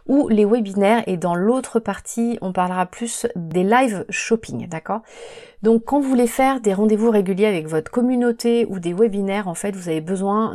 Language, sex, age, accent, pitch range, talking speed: French, female, 30-49, French, 180-230 Hz, 190 wpm